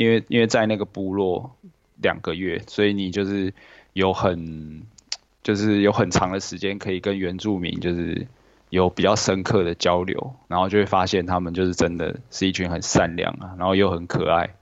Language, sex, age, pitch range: Chinese, male, 20-39, 90-105 Hz